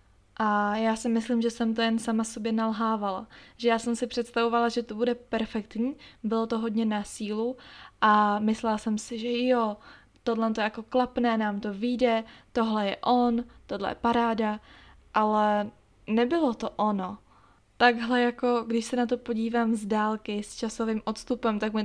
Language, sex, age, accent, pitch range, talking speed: Czech, female, 20-39, native, 215-240 Hz, 170 wpm